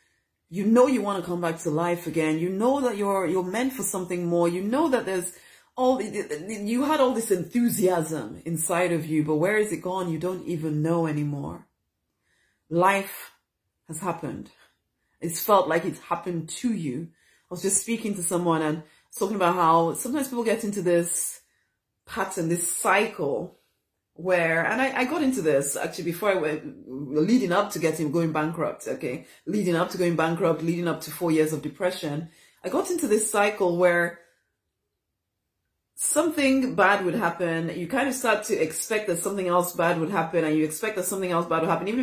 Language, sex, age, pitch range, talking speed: English, female, 30-49, 165-210 Hz, 190 wpm